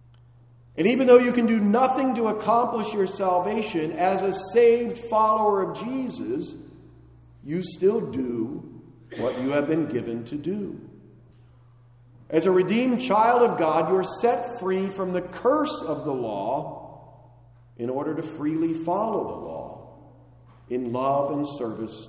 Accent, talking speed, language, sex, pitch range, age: American, 145 wpm, English, male, 120-190 Hz, 50-69